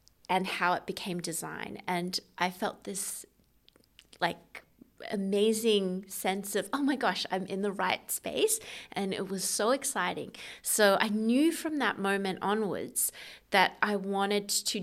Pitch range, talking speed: 180-215 Hz, 150 wpm